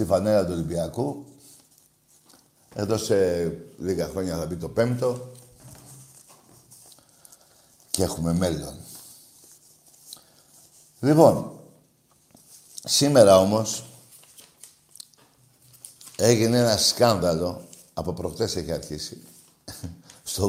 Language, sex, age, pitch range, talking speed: Greek, male, 60-79, 120-155 Hz, 75 wpm